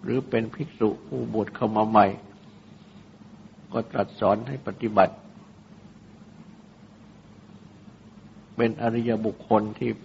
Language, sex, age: Thai, male, 60-79